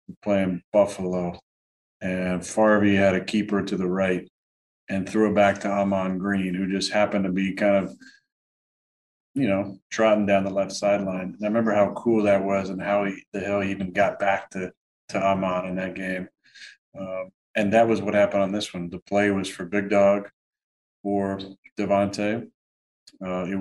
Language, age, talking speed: English, 40-59, 180 wpm